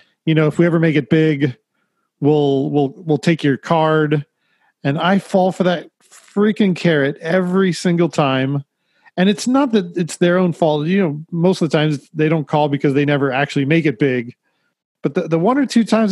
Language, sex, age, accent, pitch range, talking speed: English, male, 40-59, American, 150-185 Hz, 205 wpm